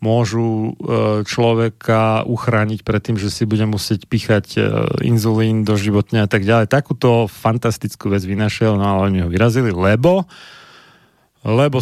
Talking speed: 135 wpm